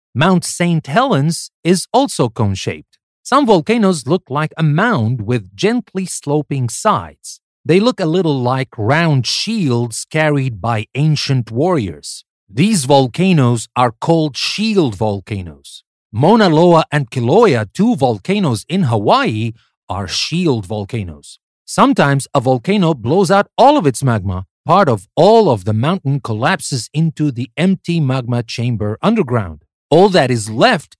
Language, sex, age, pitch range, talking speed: English, male, 40-59, 115-170 Hz, 135 wpm